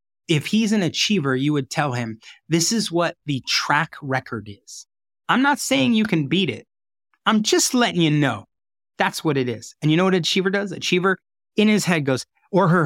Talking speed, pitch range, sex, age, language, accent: 210 wpm, 135-190 Hz, male, 20-39, English, American